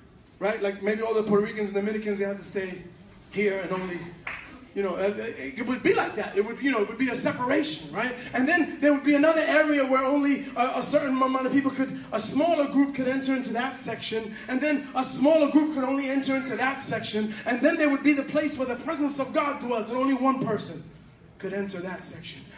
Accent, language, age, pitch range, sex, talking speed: American, English, 20-39, 225-285 Hz, male, 240 wpm